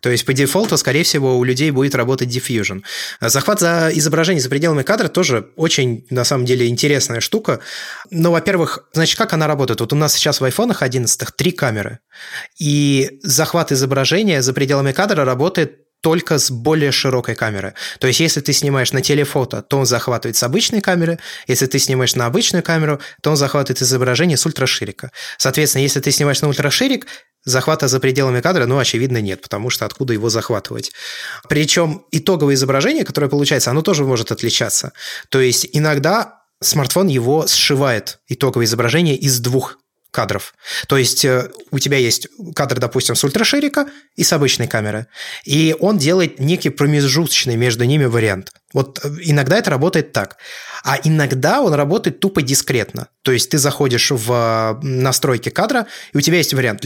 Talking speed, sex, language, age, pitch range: 165 wpm, male, Russian, 20-39, 125-160 Hz